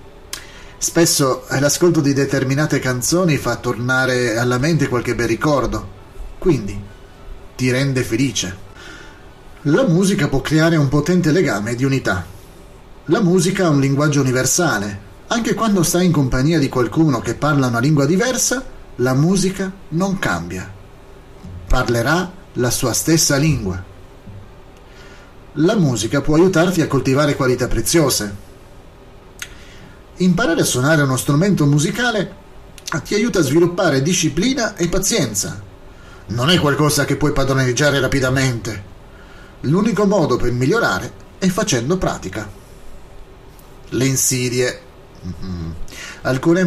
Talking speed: 115 wpm